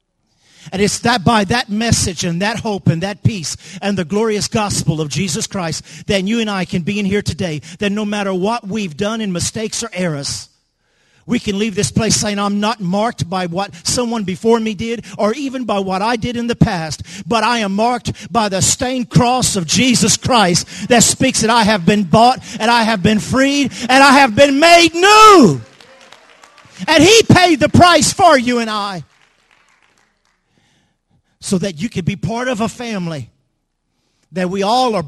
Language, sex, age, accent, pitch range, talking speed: English, male, 50-69, American, 170-225 Hz, 195 wpm